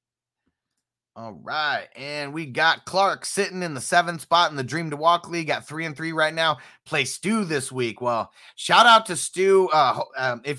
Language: English